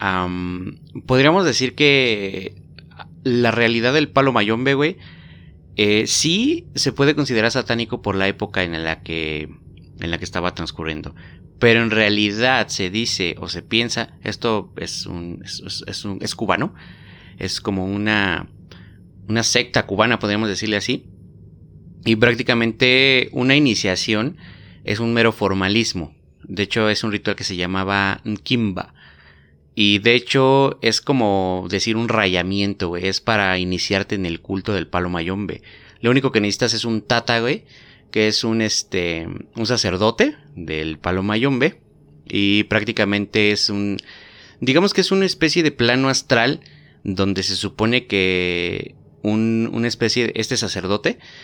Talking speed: 145 wpm